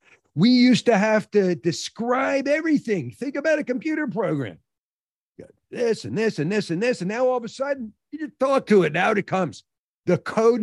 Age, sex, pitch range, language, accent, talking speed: 50-69, male, 170-245 Hz, English, American, 205 wpm